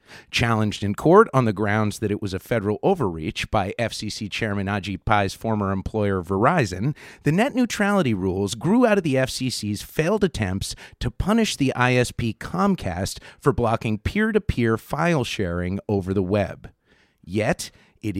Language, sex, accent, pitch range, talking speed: English, male, American, 95-135 Hz, 150 wpm